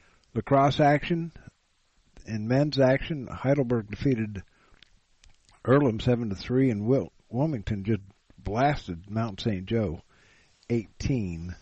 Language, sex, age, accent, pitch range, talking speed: English, male, 50-69, American, 95-130 Hz, 105 wpm